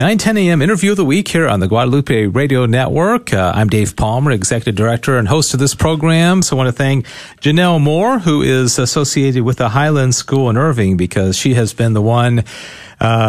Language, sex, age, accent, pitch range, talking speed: English, male, 40-59, American, 110-150 Hz, 210 wpm